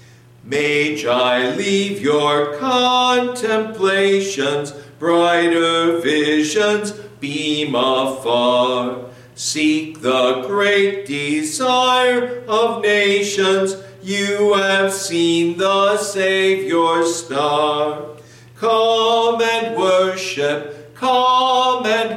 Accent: American